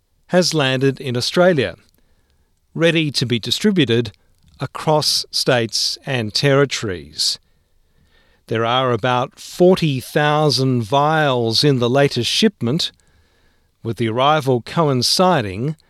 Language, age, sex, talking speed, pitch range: English, 40-59, male, 95 wpm, 105-155 Hz